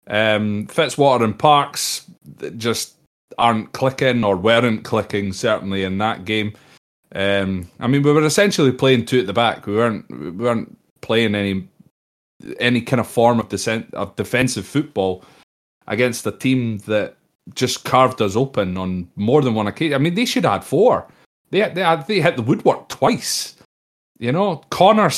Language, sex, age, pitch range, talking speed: English, male, 30-49, 100-145 Hz, 170 wpm